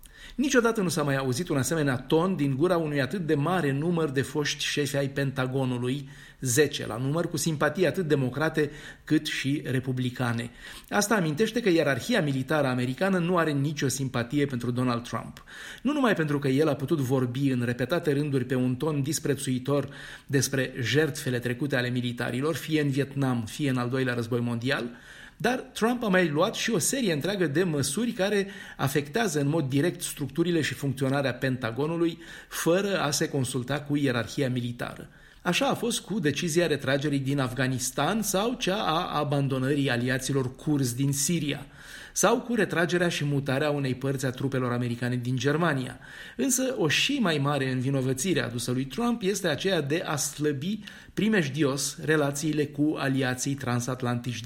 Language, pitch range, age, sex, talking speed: Romanian, 130-165 Hz, 30-49, male, 160 wpm